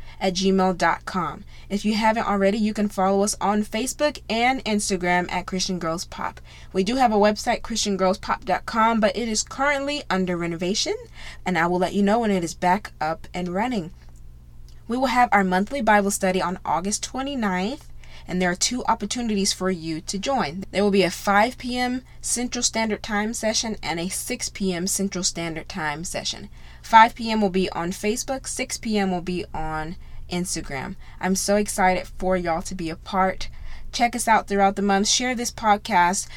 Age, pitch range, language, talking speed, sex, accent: 20-39, 180-225 Hz, English, 180 wpm, female, American